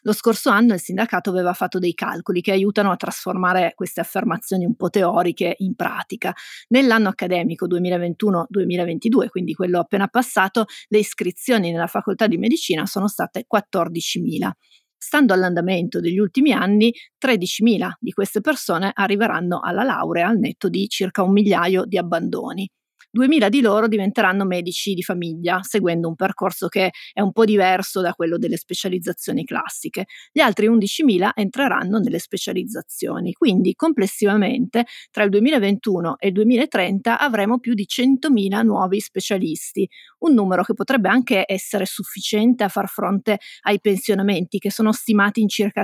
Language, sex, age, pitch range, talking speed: Italian, female, 30-49, 185-225 Hz, 150 wpm